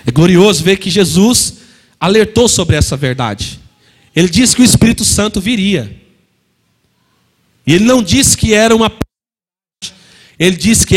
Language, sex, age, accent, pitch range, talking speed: Portuguese, male, 40-59, Brazilian, 180-240 Hz, 150 wpm